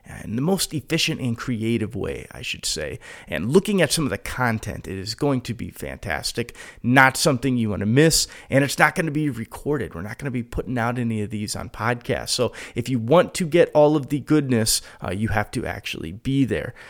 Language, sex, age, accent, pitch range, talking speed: English, male, 30-49, American, 105-145 Hz, 230 wpm